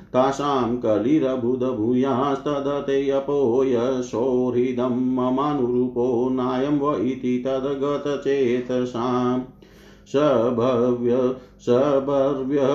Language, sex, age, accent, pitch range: Hindi, male, 50-69, native, 125-140 Hz